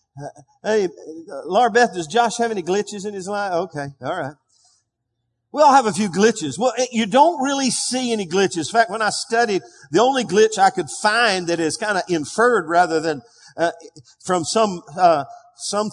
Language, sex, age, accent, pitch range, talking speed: English, male, 50-69, American, 165-235 Hz, 190 wpm